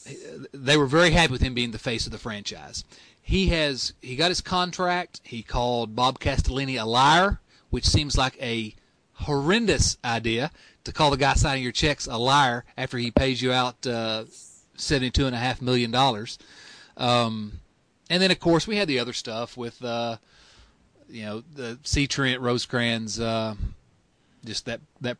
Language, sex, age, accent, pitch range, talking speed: English, male, 30-49, American, 115-140 Hz, 175 wpm